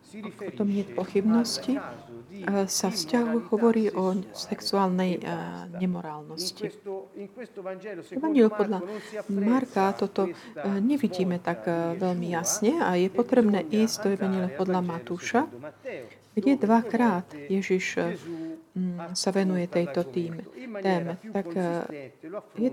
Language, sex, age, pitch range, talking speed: Slovak, female, 40-59, 175-220 Hz, 90 wpm